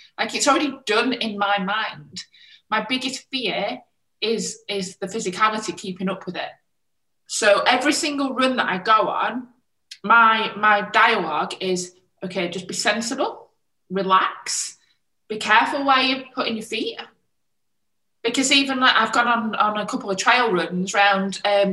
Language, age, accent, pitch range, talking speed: English, 20-39, British, 195-245 Hz, 155 wpm